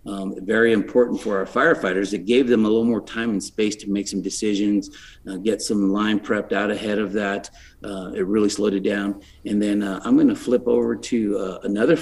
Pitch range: 95-110 Hz